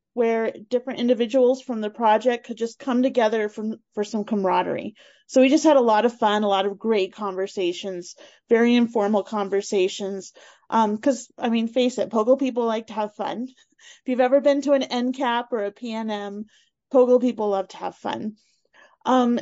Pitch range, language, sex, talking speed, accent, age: 205-260 Hz, English, female, 180 wpm, American, 30-49